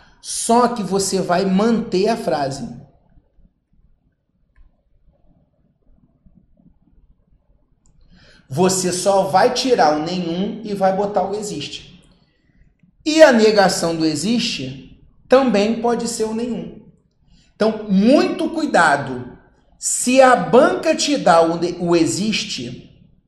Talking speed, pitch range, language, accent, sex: 100 wpm, 160-225 Hz, Portuguese, Brazilian, male